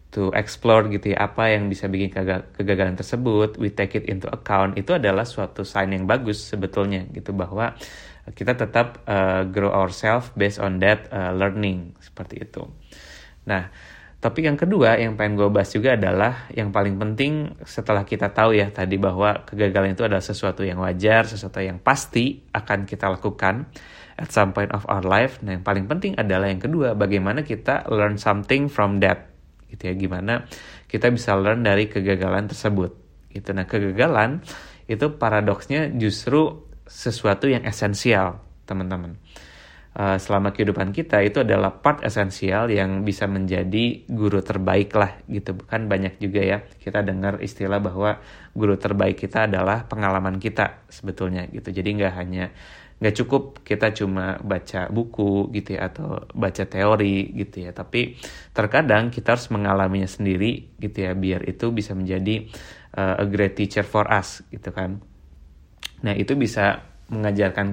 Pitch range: 95-110 Hz